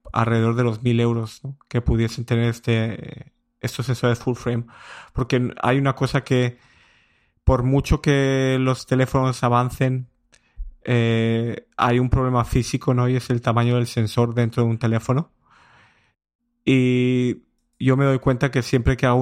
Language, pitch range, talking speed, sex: Spanish, 120-130 Hz, 155 wpm, male